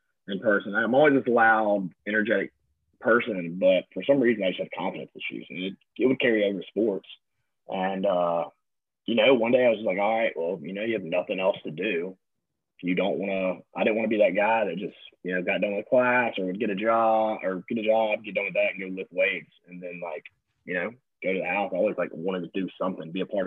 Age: 20-39